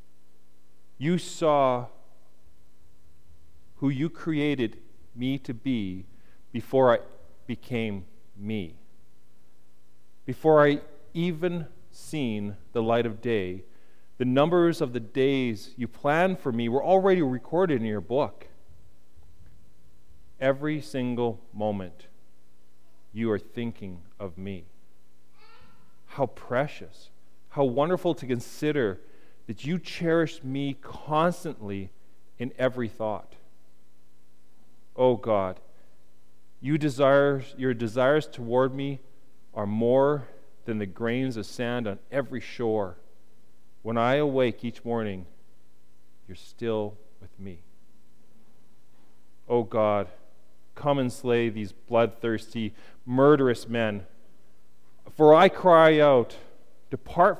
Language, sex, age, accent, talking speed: English, male, 40-59, American, 105 wpm